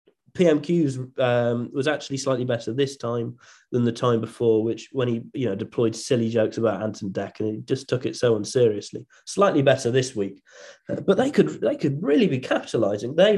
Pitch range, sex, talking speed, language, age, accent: 115-150 Hz, male, 195 wpm, English, 30-49, British